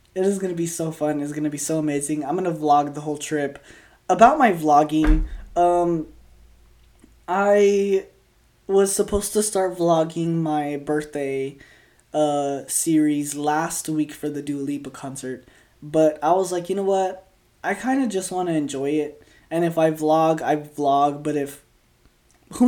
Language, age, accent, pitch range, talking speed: English, 20-39, American, 145-175 Hz, 165 wpm